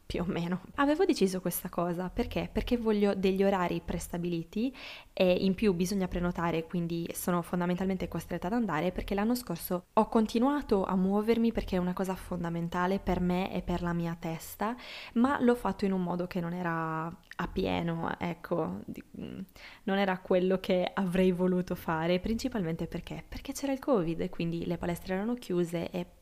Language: Italian